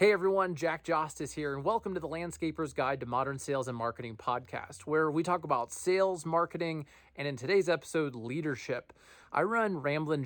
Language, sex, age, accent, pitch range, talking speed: English, male, 20-39, American, 120-160 Hz, 185 wpm